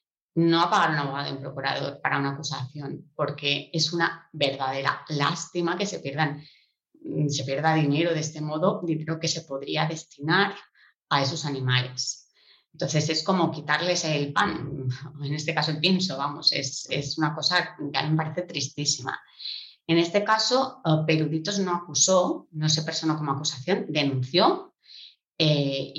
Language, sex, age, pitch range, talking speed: Spanish, female, 20-39, 140-165 Hz, 155 wpm